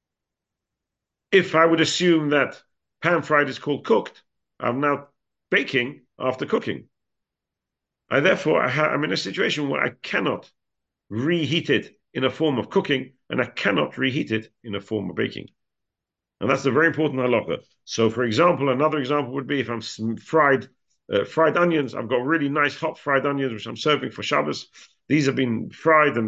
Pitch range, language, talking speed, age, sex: 115-150 Hz, English, 175 wpm, 50-69, male